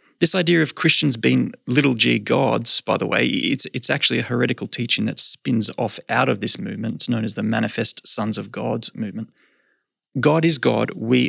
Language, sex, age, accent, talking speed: English, male, 20-39, Australian, 195 wpm